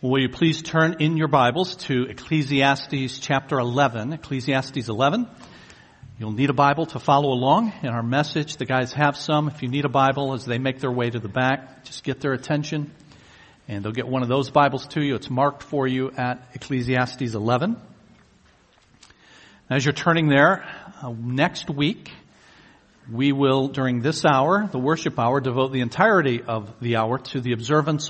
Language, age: English, 50-69